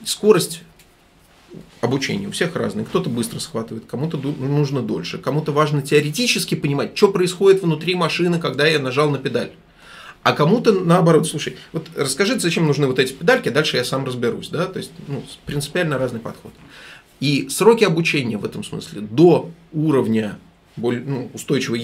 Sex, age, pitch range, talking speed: male, 20-39, 135-185 Hz, 150 wpm